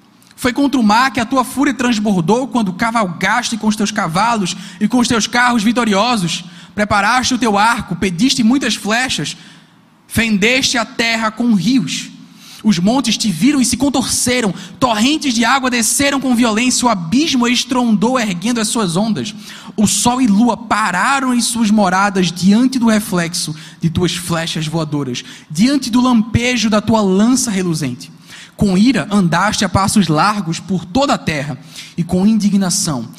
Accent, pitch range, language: Brazilian, 180-235 Hz, Portuguese